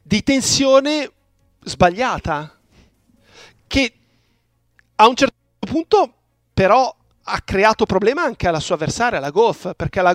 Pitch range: 165-230 Hz